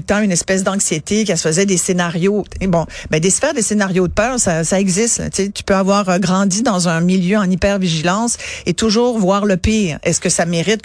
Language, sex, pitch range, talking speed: French, female, 180-225 Hz, 230 wpm